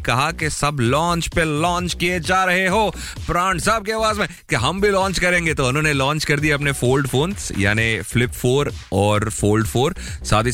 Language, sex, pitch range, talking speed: Hindi, male, 110-155 Hz, 170 wpm